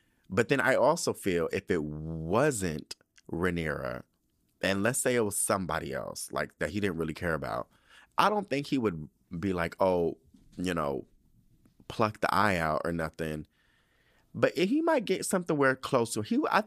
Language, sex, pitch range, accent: English, male, 80-120 Hz, American